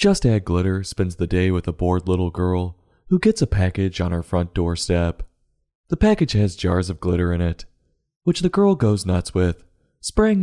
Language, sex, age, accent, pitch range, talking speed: English, male, 20-39, American, 90-110 Hz, 195 wpm